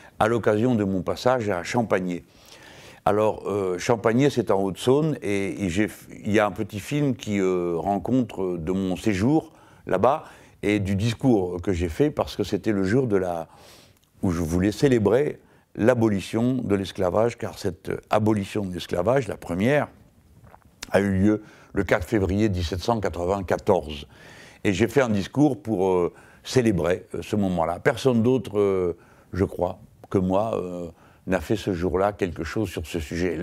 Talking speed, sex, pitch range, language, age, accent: 160 wpm, male, 90-110 Hz, French, 60-79, French